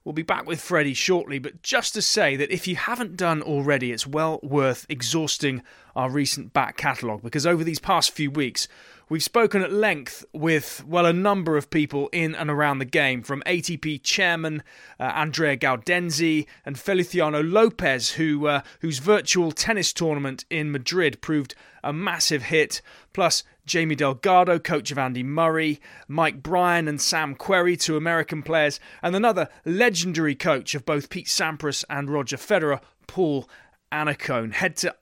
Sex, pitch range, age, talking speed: male, 140-175 Hz, 30-49, 165 wpm